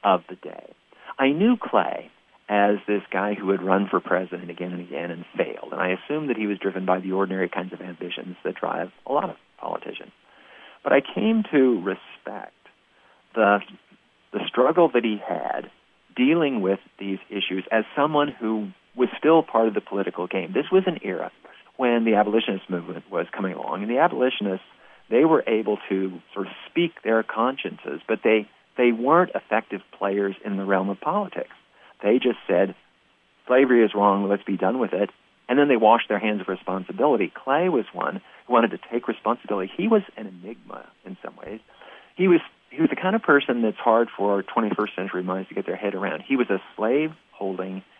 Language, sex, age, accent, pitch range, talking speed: English, male, 40-59, American, 95-125 Hz, 195 wpm